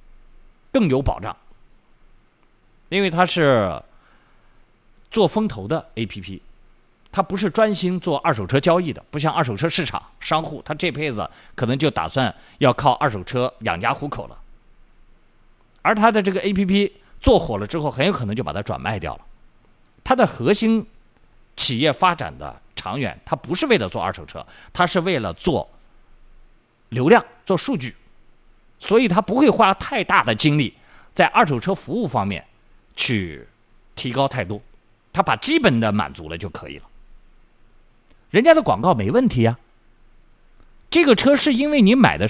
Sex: male